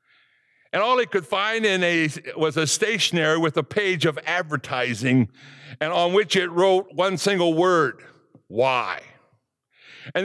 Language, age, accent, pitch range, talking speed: English, 60-79, American, 140-205 Hz, 135 wpm